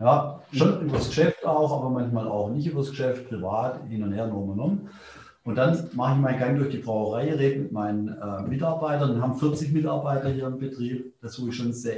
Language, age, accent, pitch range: German, 40-59, German, 120-140 Hz